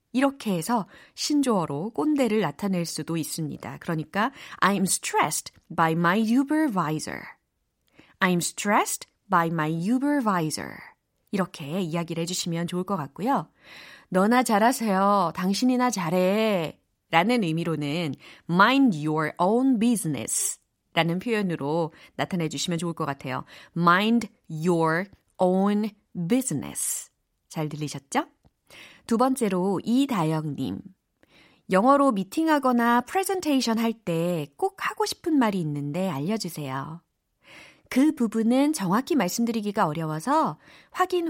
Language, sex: Korean, female